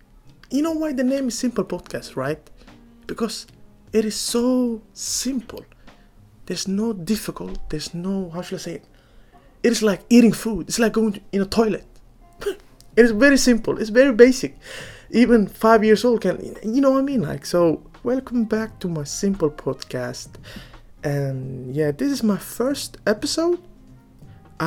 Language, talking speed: English, 165 wpm